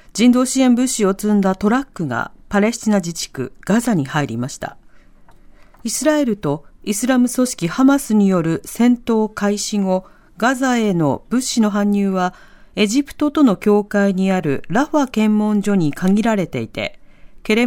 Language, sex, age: Japanese, female, 40-59